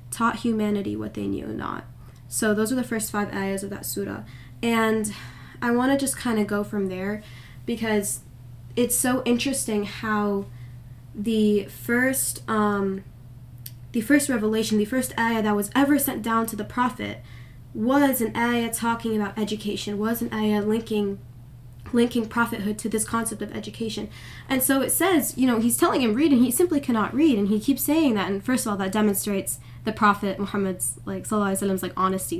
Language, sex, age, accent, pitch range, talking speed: English, female, 10-29, American, 190-240 Hz, 185 wpm